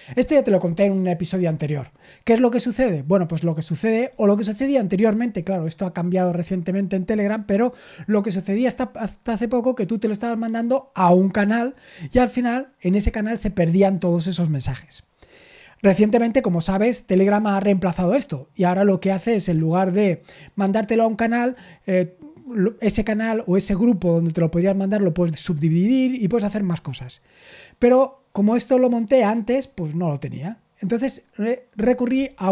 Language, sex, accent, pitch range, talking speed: Spanish, male, Spanish, 180-230 Hz, 205 wpm